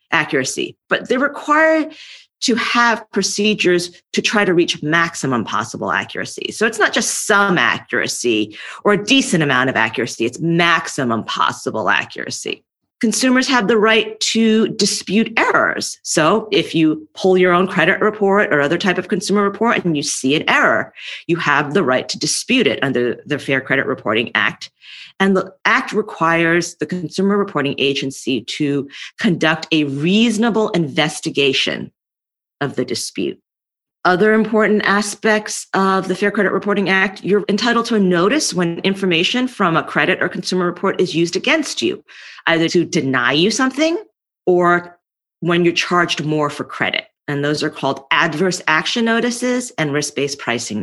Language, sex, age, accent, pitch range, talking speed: English, female, 40-59, American, 150-210 Hz, 160 wpm